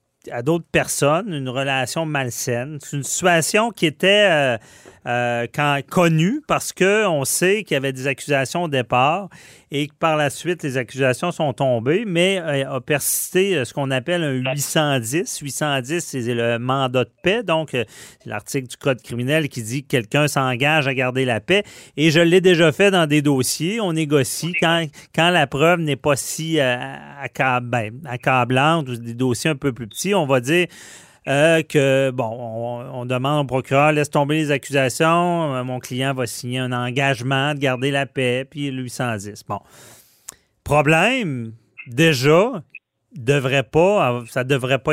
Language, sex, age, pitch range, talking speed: French, male, 40-59, 125-165 Hz, 170 wpm